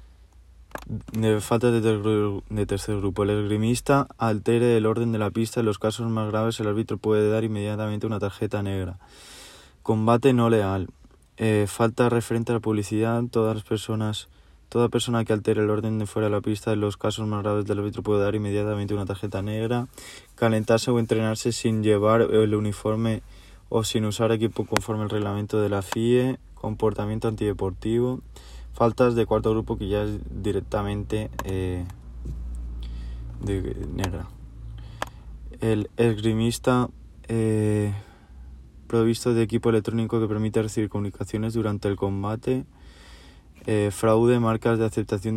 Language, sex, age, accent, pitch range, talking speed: Spanish, male, 20-39, Spanish, 100-115 Hz, 150 wpm